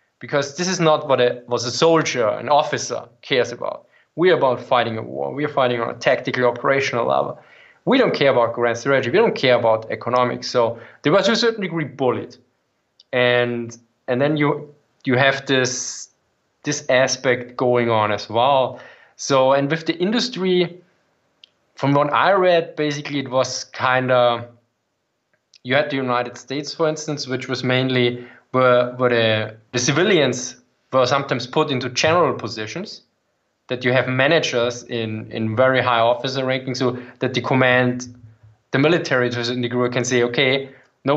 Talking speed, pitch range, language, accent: 170 wpm, 120-145 Hz, English, German